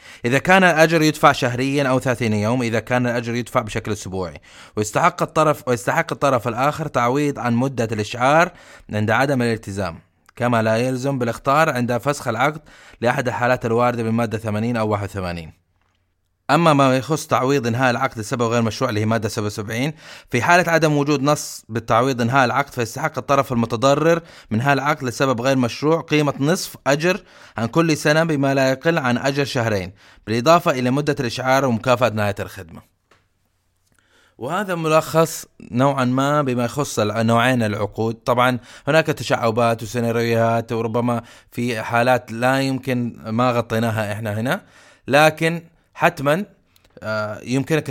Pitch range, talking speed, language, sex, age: 110-140 Hz, 140 wpm, Arabic, male, 20-39